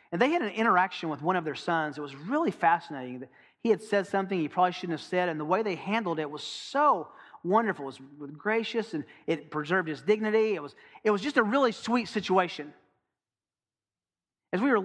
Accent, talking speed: American, 210 wpm